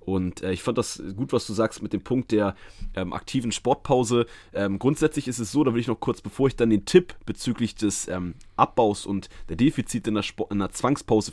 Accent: German